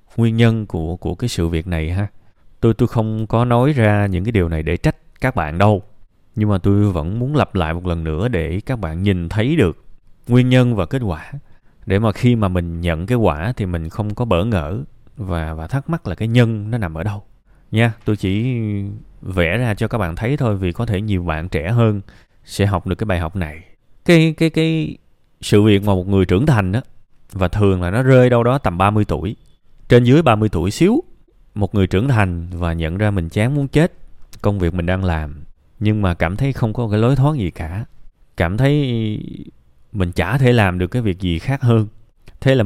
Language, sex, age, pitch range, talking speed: Vietnamese, male, 20-39, 90-125 Hz, 225 wpm